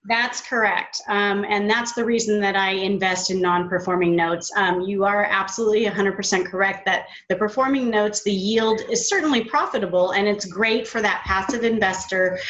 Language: English